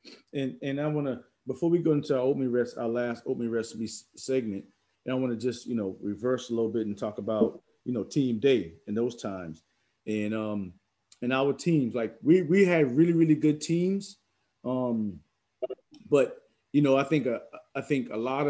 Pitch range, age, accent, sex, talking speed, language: 120-155 Hz, 30-49, American, male, 200 wpm, English